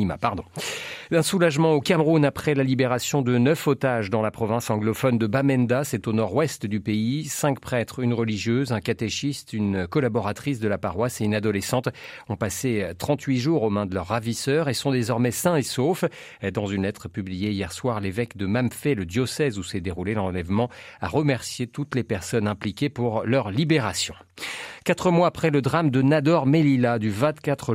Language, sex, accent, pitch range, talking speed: French, male, French, 110-145 Hz, 180 wpm